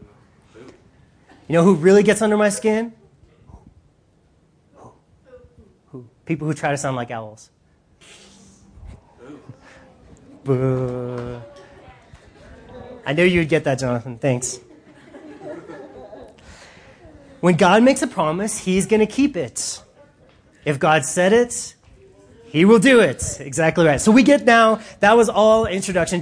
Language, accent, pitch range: English, American, 145-215 Hz